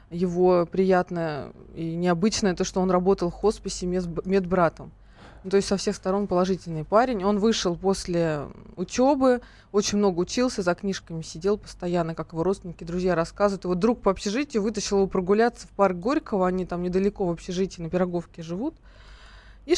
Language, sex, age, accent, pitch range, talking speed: Russian, female, 20-39, native, 180-220 Hz, 165 wpm